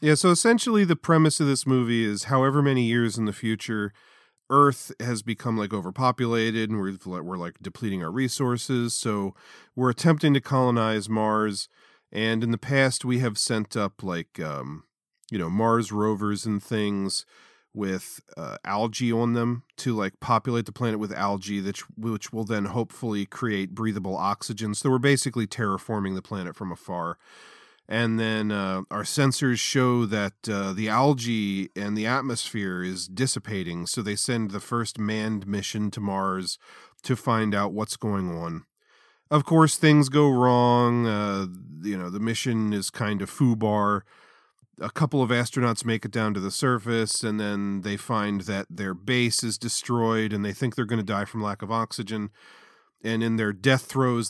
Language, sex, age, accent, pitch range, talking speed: English, male, 40-59, American, 105-125 Hz, 170 wpm